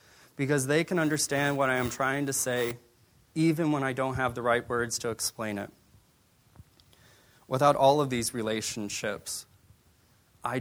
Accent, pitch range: American, 110-130 Hz